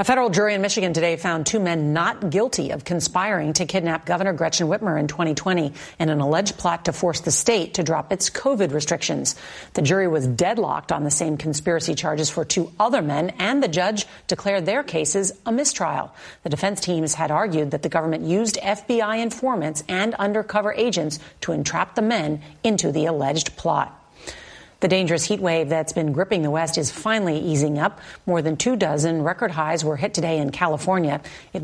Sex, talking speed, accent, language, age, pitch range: female, 190 wpm, American, English, 40-59, 160-200 Hz